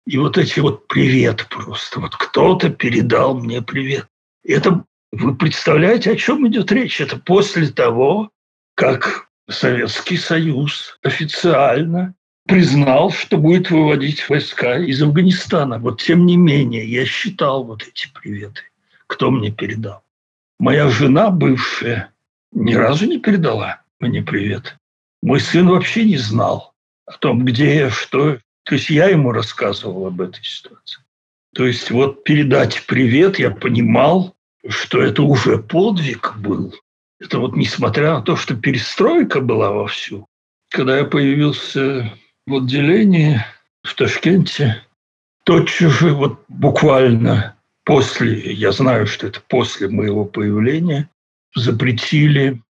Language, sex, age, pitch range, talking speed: Russian, male, 60-79, 125-170 Hz, 125 wpm